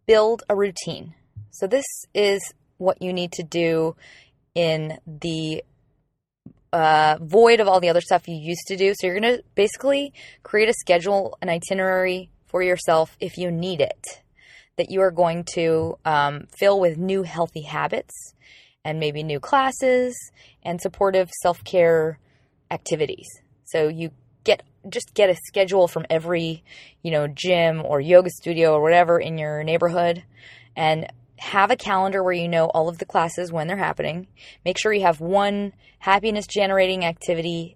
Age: 20-39